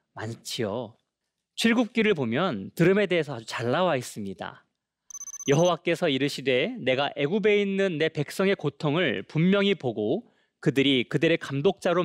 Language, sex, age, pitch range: Korean, male, 30-49, 140-200 Hz